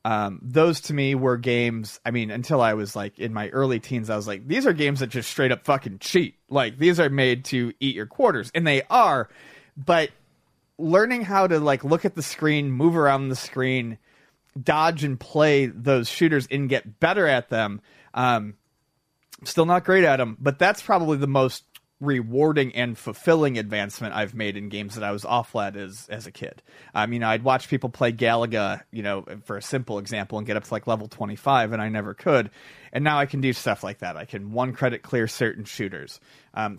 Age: 30-49